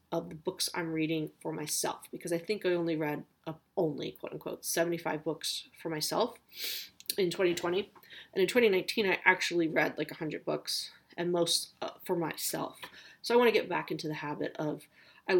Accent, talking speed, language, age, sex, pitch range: American, 185 wpm, English, 30-49, female, 160-185 Hz